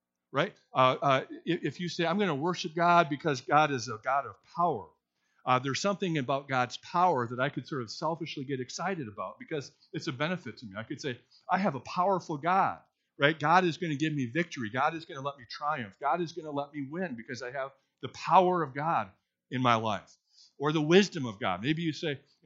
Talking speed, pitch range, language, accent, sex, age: 235 wpm, 125-170 Hz, English, American, male, 50-69